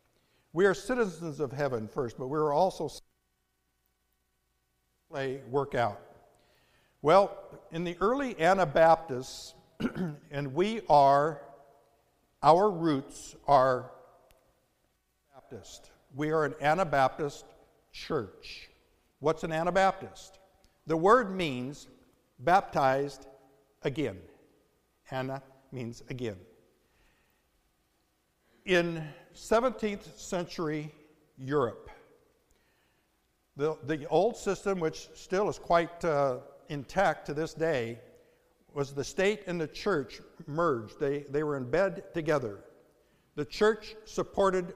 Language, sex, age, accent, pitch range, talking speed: English, male, 60-79, American, 140-180 Hz, 100 wpm